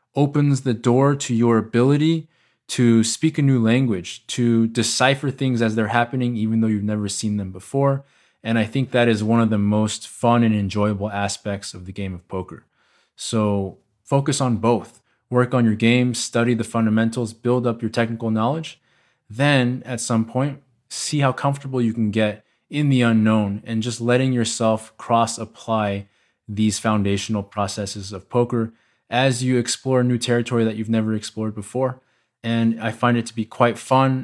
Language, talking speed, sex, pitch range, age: English, 175 wpm, male, 105-125 Hz, 20-39